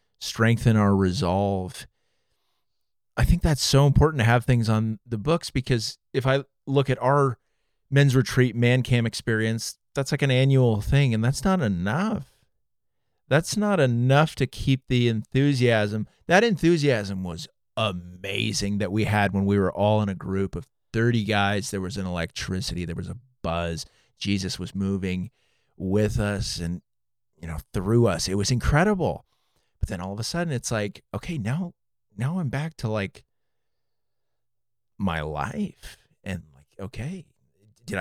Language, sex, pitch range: English, male, 100-135 Hz